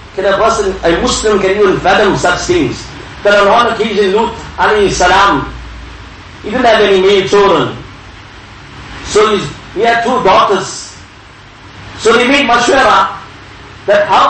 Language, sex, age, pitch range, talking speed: English, male, 50-69, 175-235 Hz, 145 wpm